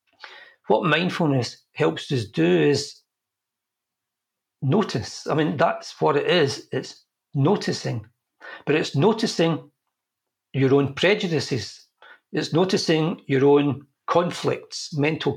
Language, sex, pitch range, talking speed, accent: English, male, 135-180 Hz, 105 wpm, British